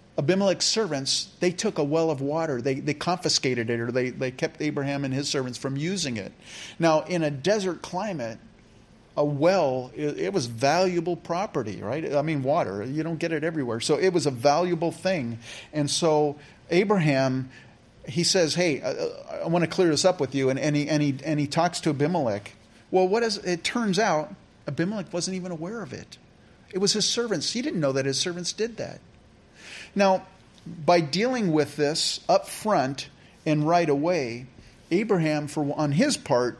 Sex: male